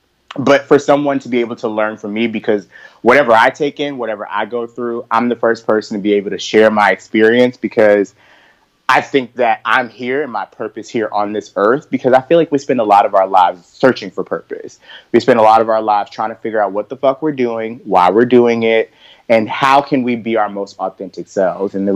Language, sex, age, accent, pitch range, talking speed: English, male, 30-49, American, 110-140 Hz, 240 wpm